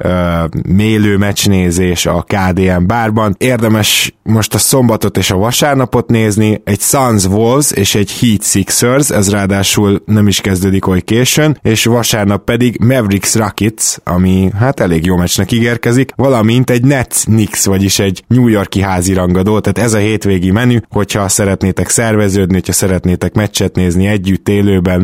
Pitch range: 95-115 Hz